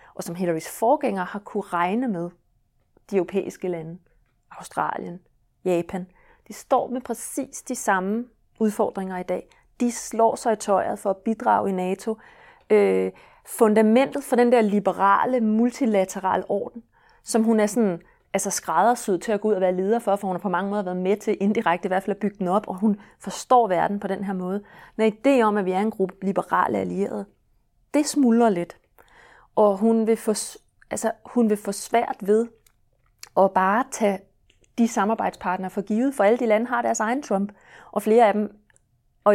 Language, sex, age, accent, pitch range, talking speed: Danish, female, 30-49, native, 185-230 Hz, 185 wpm